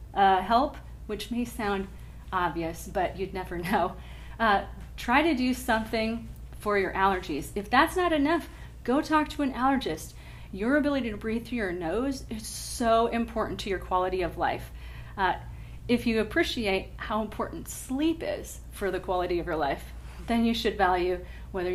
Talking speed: 170 wpm